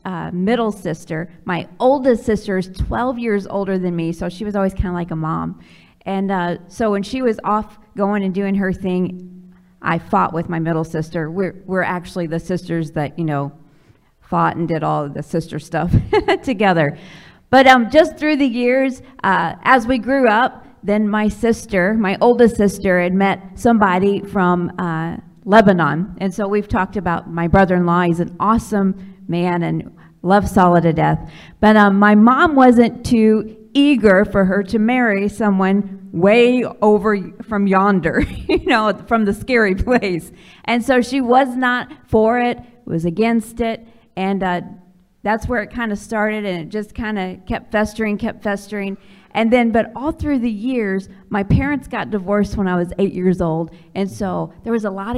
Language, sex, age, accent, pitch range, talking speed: English, female, 40-59, American, 180-225 Hz, 180 wpm